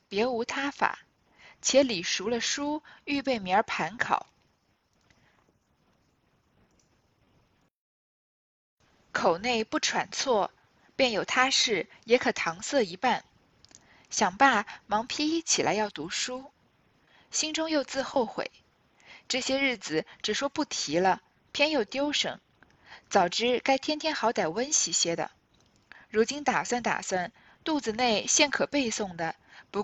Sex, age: female, 10-29